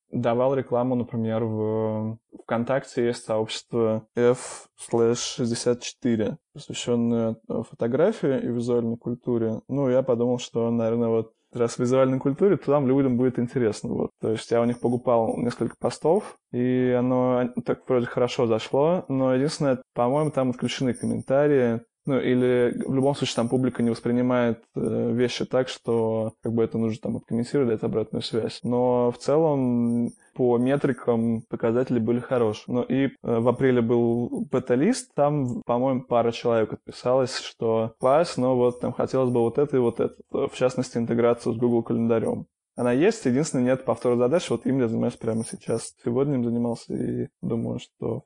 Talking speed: 160 wpm